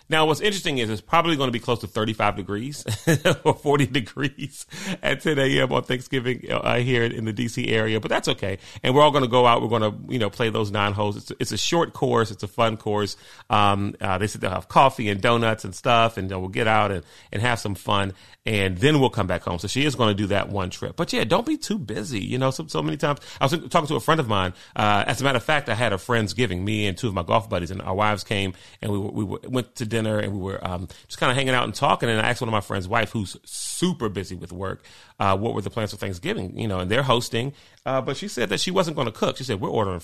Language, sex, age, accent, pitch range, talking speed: English, male, 30-49, American, 105-130 Hz, 290 wpm